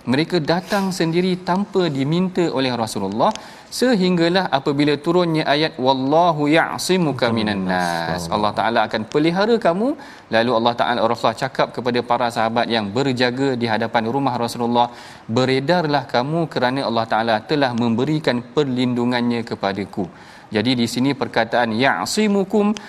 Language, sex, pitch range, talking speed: Malayalam, male, 115-155 Hz, 125 wpm